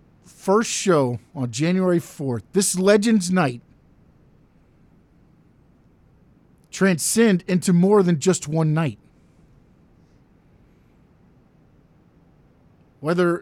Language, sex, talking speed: English, male, 70 wpm